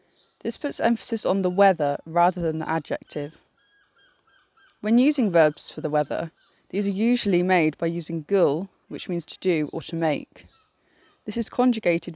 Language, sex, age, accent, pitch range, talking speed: English, female, 20-39, British, 170-230 Hz, 165 wpm